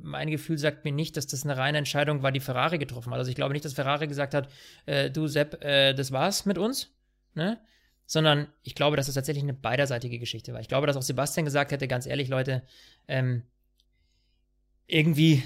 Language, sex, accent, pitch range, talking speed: German, male, German, 125-150 Hz, 210 wpm